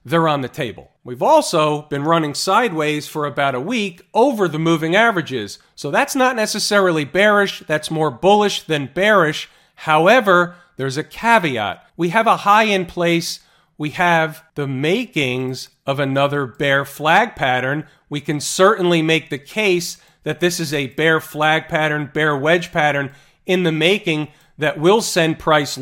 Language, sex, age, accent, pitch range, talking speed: English, male, 40-59, American, 145-180 Hz, 160 wpm